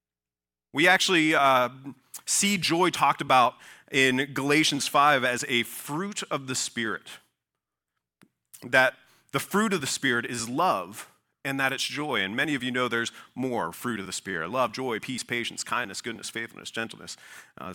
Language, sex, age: English, male, 30-49